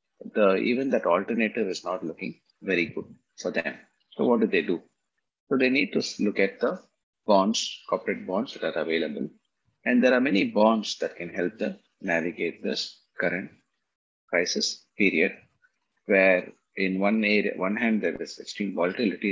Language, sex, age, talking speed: English, male, 30-49, 165 wpm